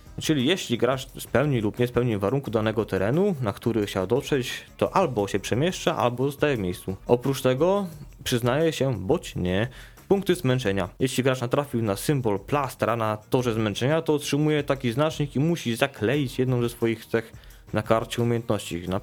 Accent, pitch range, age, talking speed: native, 110-145 Hz, 20-39, 170 wpm